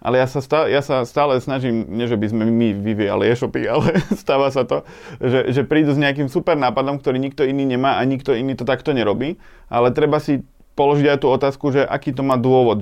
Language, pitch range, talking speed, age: Slovak, 120-140 Hz, 215 wpm, 30-49